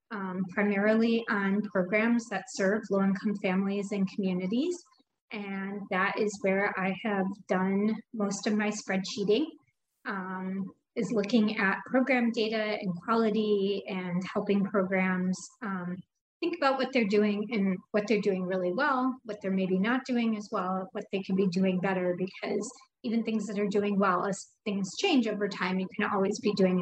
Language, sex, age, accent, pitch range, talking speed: English, female, 30-49, American, 190-230 Hz, 165 wpm